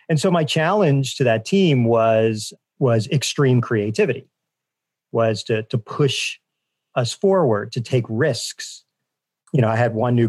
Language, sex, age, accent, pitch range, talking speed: English, male, 40-59, American, 110-150 Hz, 150 wpm